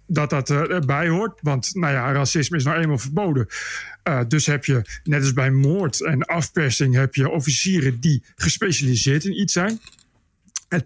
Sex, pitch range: male, 145-180 Hz